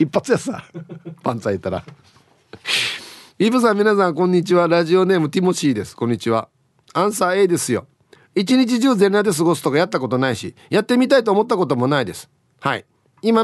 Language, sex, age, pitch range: Japanese, male, 40-59, 135-210 Hz